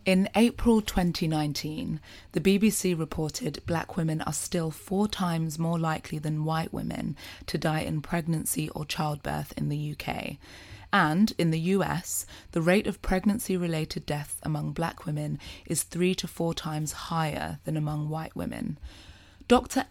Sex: female